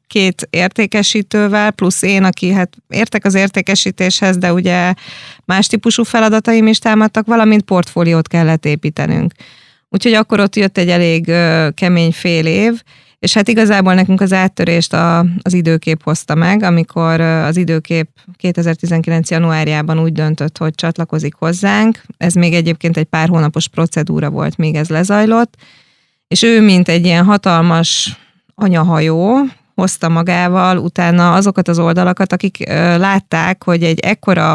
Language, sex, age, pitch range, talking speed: Hungarian, female, 30-49, 165-195 Hz, 135 wpm